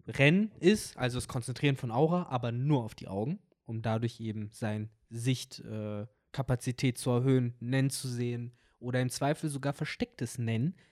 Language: German